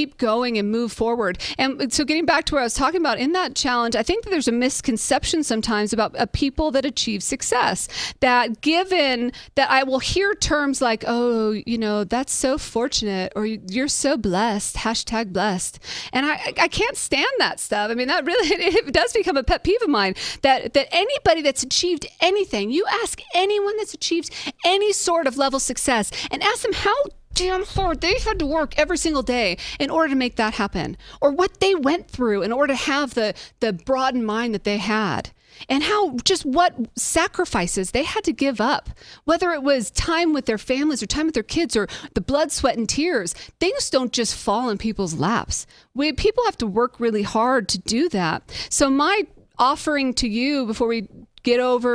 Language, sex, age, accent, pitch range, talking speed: English, female, 40-59, American, 225-310 Hz, 200 wpm